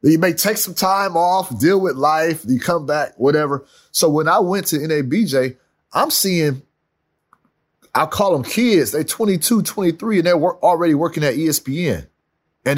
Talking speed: 165 wpm